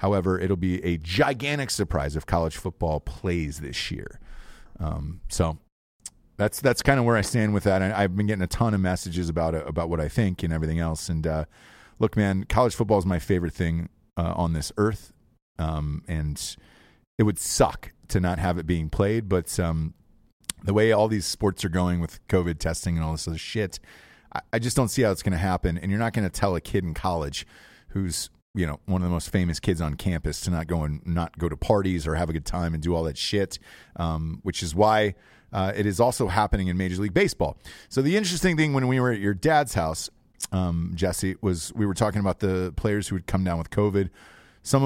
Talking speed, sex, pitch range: 230 wpm, male, 85-105 Hz